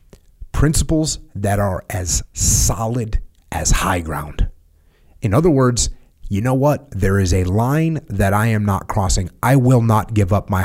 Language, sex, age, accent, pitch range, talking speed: English, male, 30-49, American, 100-140 Hz, 165 wpm